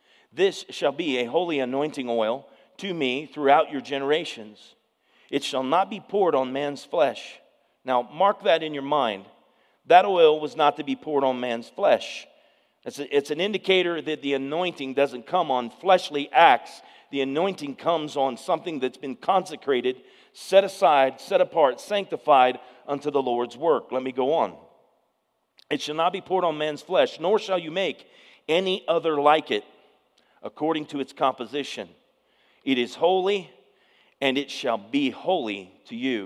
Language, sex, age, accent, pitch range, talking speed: English, male, 40-59, American, 140-190 Hz, 165 wpm